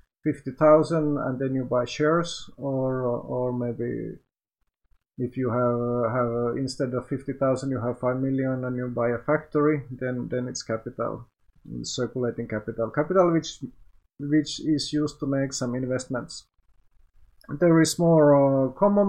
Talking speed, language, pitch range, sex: 145 wpm, Finnish, 130-160 Hz, male